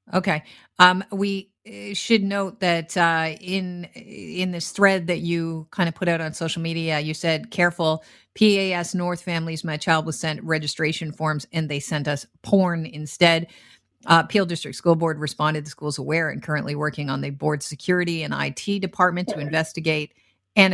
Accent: American